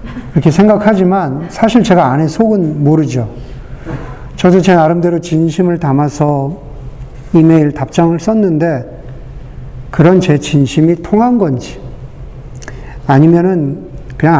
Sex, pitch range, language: male, 130-185 Hz, Korean